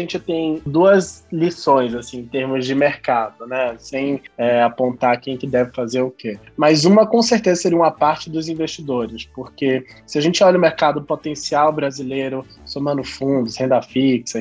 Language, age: Portuguese, 20-39